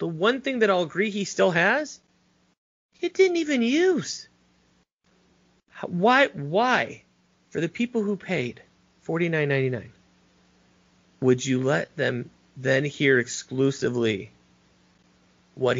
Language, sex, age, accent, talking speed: English, male, 30-49, American, 120 wpm